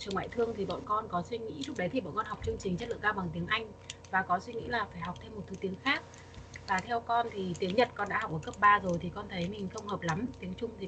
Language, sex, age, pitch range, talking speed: Vietnamese, female, 20-39, 180-235 Hz, 320 wpm